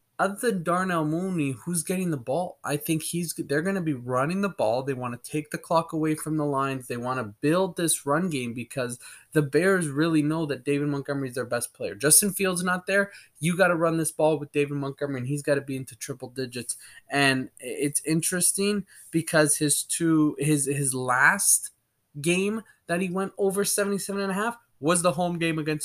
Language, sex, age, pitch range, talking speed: English, male, 20-39, 140-175 Hz, 210 wpm